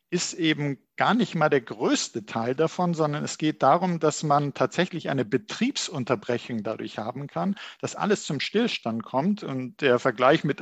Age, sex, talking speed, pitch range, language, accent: 50-69, male, 170 wpm, 135-175 Hz, German, German